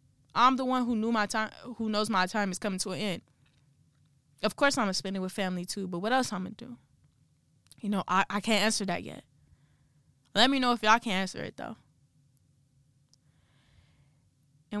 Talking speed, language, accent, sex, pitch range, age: 205 wpm, English, American, female, 185-225 Hz, 10-29